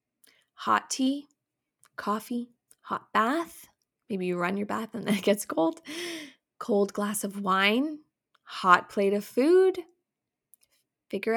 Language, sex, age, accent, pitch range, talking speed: English, female, 20-39, American, 190-250 Hz, 125 wpm